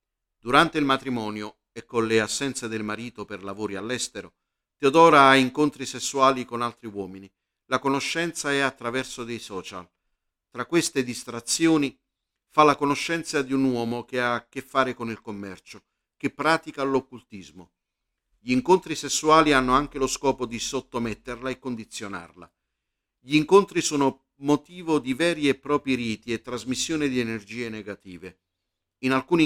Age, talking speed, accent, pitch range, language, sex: 50-69, 145 wpm, native, 110-140 Hz, Italian, male